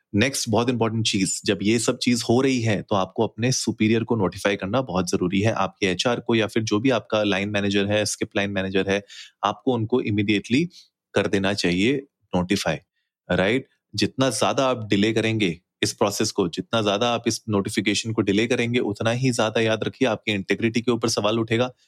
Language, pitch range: Hindi, 100-120 Hz